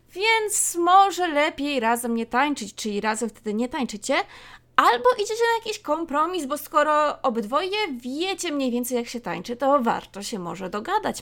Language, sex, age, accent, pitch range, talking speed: Polish, female, 20-39, native, 230-325 Hz, 160 wpm